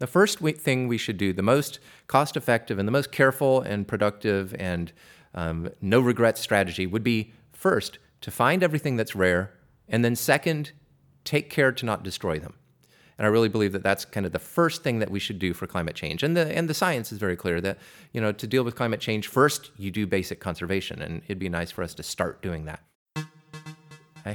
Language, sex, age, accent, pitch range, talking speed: English, male, 30-49, American, 95-145 Hz, 215 wpm